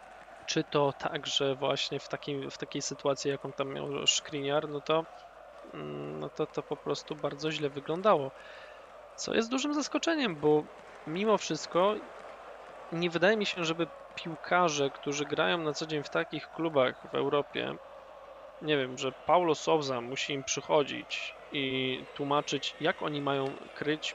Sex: male